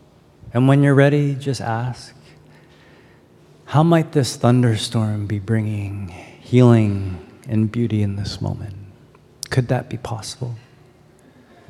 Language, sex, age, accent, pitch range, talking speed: English, male, 30-49, American, 110-140 Hz, 115 wpm